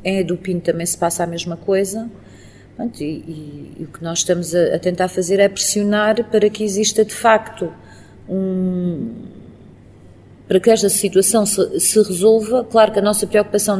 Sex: female